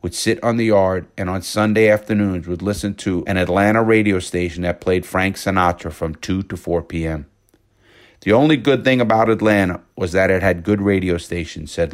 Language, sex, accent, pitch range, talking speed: English, male, American, 90-105 Hz, 195 wpm